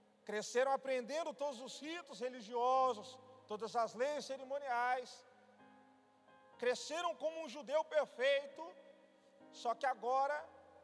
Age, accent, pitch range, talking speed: 40-59, Brazilian, 250-300 Hz, 100 wpm